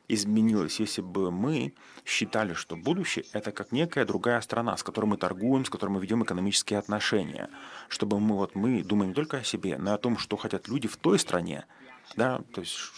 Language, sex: Russian, male